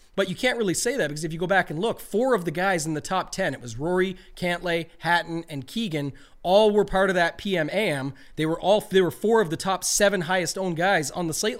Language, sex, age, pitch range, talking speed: English, male, 30-49, 150-190 Hz, 260 wpm